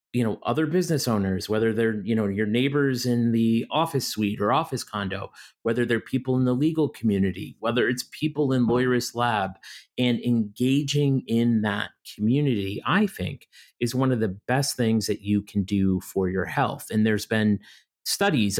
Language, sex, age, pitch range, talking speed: English, male, 40-59, 105-125 Hz, 175 wpm